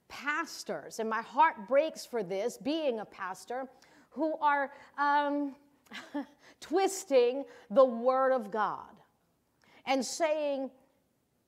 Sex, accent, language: female, American, English